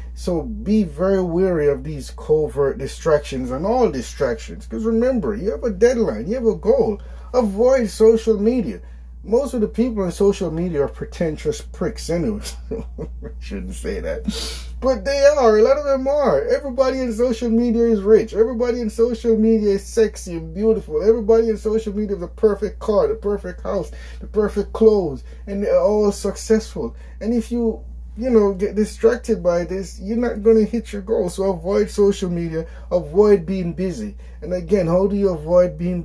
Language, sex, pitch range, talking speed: English, male, 145-225 Hz, 180 wpm